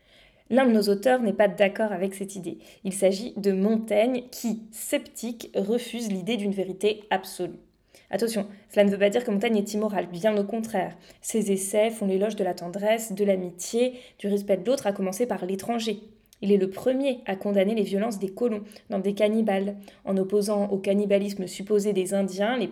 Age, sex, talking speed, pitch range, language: 20-39, female, 190 wpm, 195-235 Hz, French